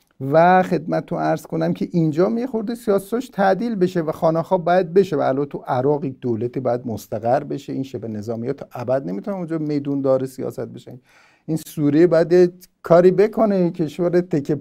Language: Persian